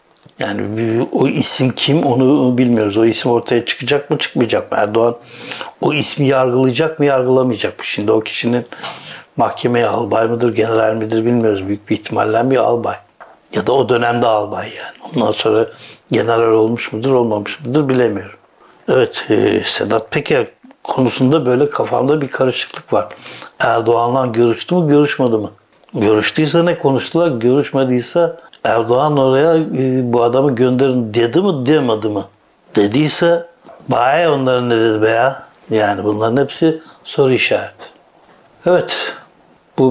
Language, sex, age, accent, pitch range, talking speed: Turkish, male, 60-79, native, 115-135 Hz, 135 wpm